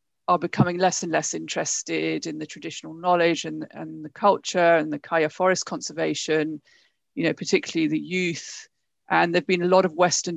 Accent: British